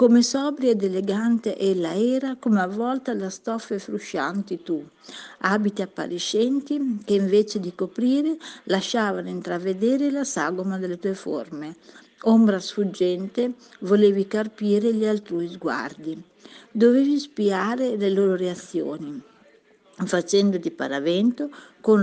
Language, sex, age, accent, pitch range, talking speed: Italian, female, 50-69, native, 185-245 Hz, 110 wpm